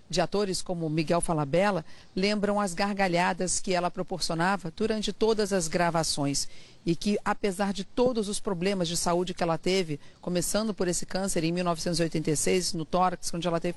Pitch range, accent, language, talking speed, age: 175-200 Hz, Brazilian, Portuguese, 170 wpm, 40-59